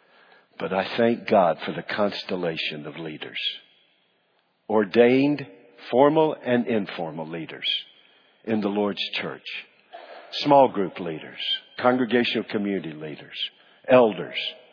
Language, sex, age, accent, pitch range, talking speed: English, male, 50-69, American, 105-135 Hz, 100 wpm